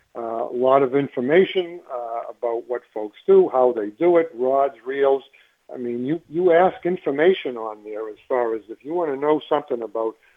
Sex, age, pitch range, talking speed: male, 60-79, 120-155 Hz, 195 wpm